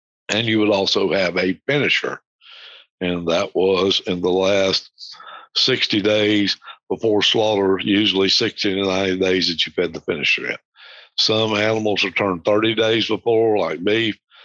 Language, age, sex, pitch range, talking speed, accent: English, 60-79, male, 95-125 Hz, 155 wpm, American